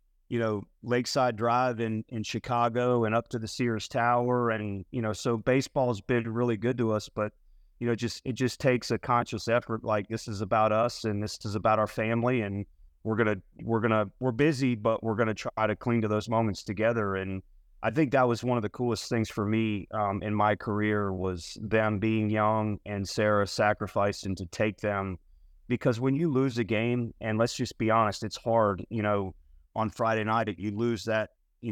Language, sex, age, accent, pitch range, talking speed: English, male, 30-49, American, 105-115 Hz, 205 wpm